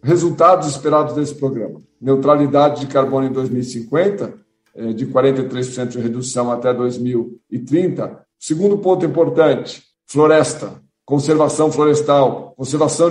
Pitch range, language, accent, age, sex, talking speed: 145-210 Hz, Portuguese, Brazilian, 50-69, male, 95 wpm